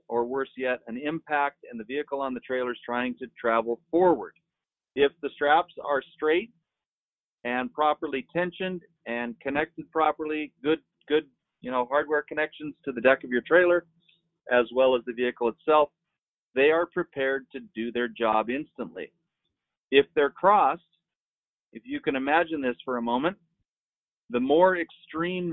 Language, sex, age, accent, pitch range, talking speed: English, male, 40-59, American, 125-165 Hz, 155 wpm